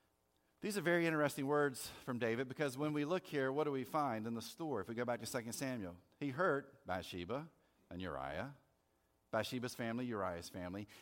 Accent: American